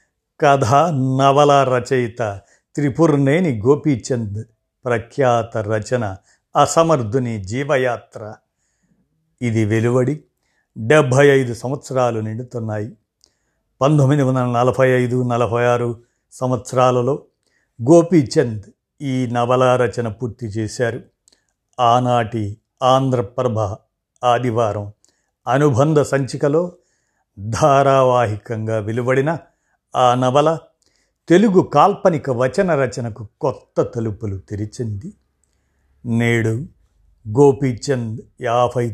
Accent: native